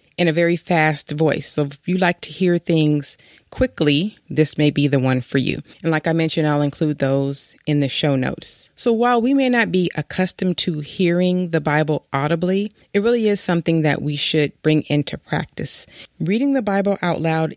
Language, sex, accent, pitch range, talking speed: English, female, American, 145-180 Hz, 200 wpm